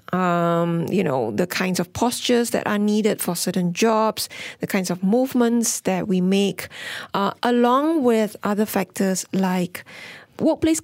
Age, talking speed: 20-39, 150 wpm